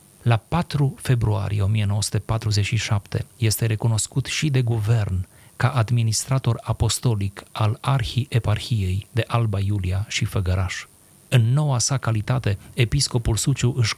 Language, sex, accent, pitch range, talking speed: Romanian, male, native, 105-120 Hz, 110 wpm